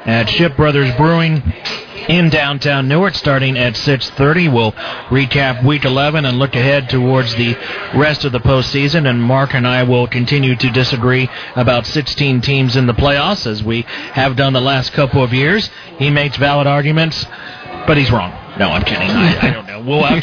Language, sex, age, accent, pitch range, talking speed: English, male, 40-59, American, 130-160 Hz, 185 wpm